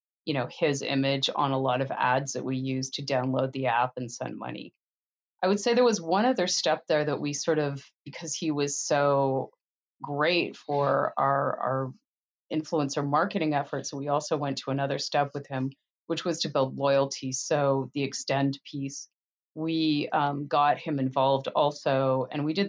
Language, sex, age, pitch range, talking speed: English, female, 30-49, 135-150 Hz, 180 wpm